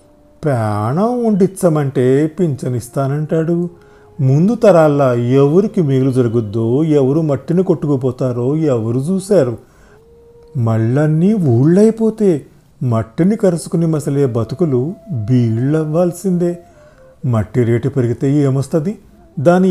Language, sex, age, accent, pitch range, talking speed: Telugu, male, 50-69, native, 125-165 Hz, 75 wpm